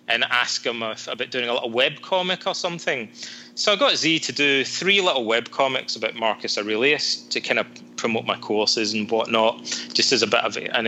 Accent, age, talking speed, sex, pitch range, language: British, 20-39, 210 wpm, male, 110-140 Hz, English